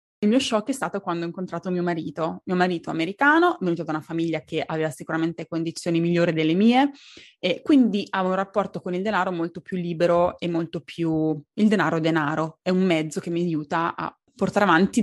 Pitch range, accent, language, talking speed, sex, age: 170-220 Hz, native, Italian, 200 wpm, female, 20-39